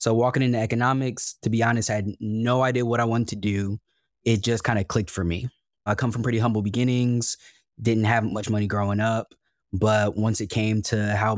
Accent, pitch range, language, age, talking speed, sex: American, 105-120 Hz, English, 20-39, 215 wpm, male